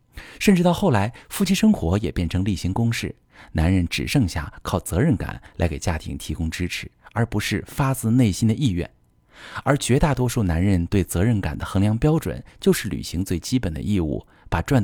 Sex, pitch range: male, 85-130 Hz